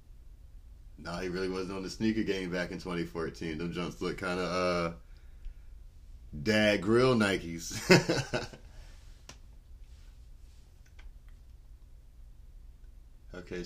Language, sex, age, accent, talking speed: English, male, 30-49, American, 95 wpm